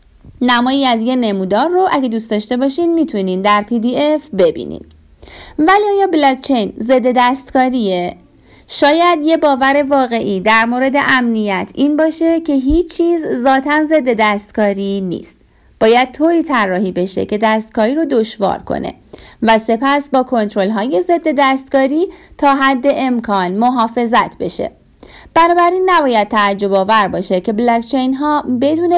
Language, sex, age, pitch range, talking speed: Persian, female, 30-49, 220-285 Hz, 135 wpm